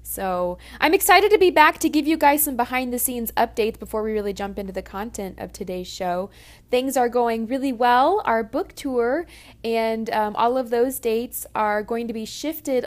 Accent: American